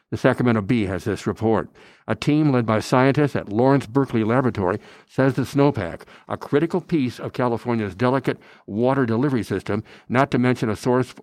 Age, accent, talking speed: 60-79, American, 170 wpm